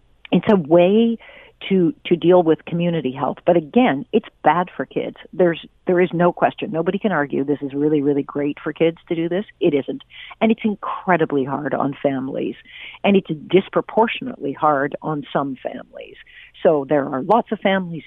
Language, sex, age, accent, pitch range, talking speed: English, female, 50-69, American, 150-210 Hz, 180 wpm